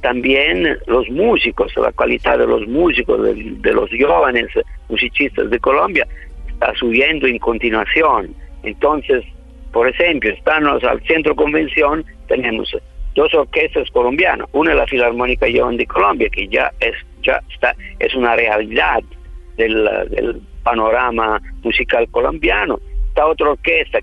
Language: Spanish